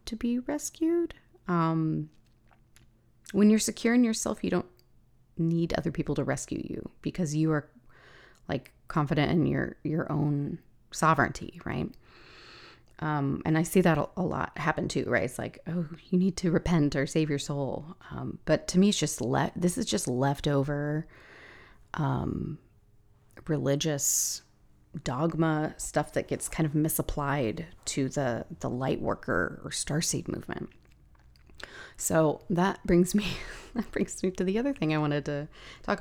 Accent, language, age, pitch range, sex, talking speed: American, English, 30-49, 135-175 Hz, female, 155 wpm